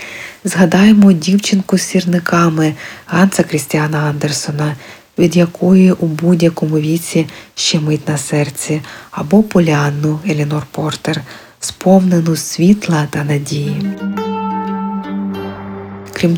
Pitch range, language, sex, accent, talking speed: 150-200 Hz, Ukrainian, female, native, 90 wpm